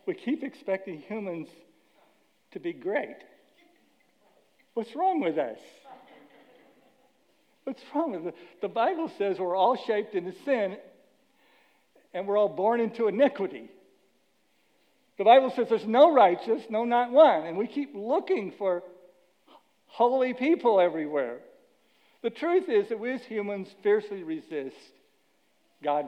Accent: American